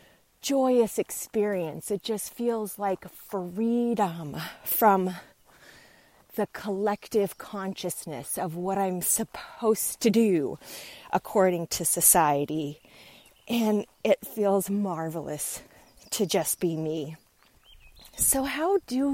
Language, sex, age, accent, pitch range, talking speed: English, female, 30-49, American, 165-235 Hz, 95 wpm